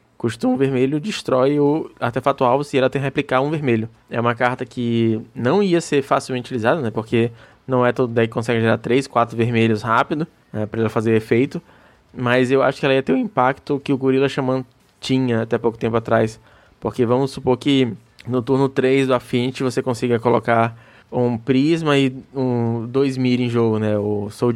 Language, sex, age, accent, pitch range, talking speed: Portuguese, male, 20-39, Brazilian, 115-135 Hz, 205 wpm